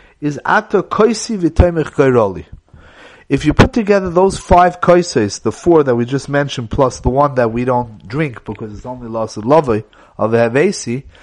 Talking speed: 160 wpm